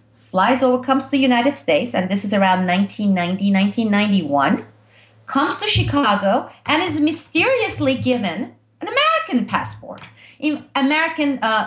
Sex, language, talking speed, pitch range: female, English, 130 wpm, 180-285 Hz